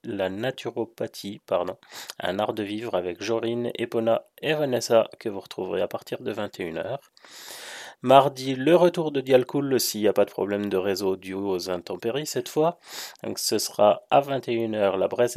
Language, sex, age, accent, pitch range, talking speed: French, male, 30-49, French, 100-120 Hz, 170 wpm